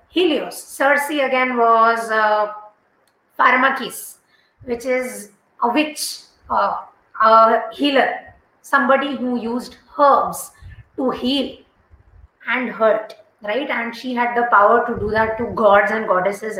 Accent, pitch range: Indian, 220-275 Hz